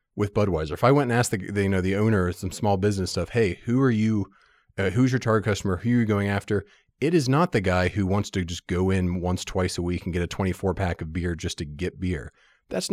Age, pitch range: 30-49, 85-105 Hz